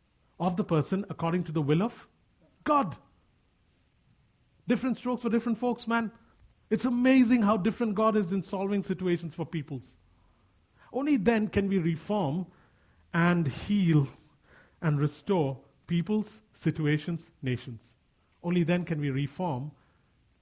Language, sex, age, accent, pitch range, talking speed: English, male, 50-69, Indian, 120-175 Hz, 125 wpm